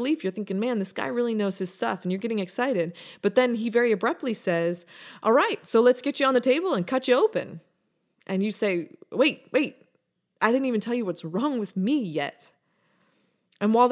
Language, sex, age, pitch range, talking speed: English, female, 20-39, 190-255 Hz, 210 wpm